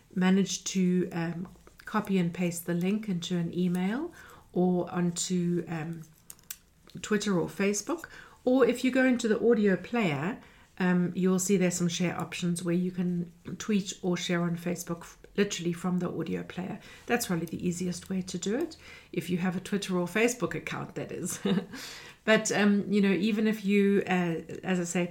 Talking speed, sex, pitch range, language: 175 wpm, female, 175-195 Hz, English